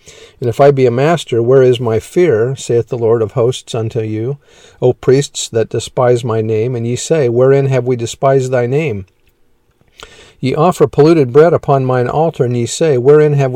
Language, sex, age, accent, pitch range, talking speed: English, male, 50-69, American, 120-145 Hz, 195 wpm